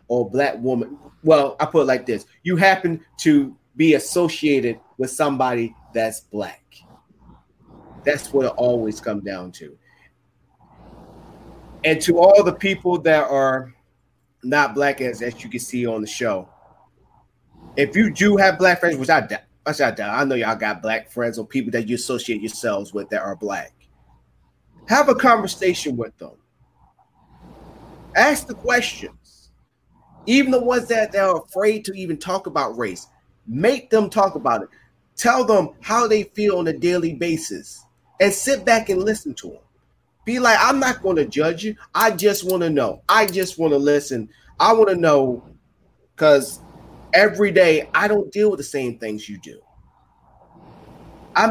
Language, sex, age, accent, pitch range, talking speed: English, male, 30-49, American, 125-210 Hz, 170 wpm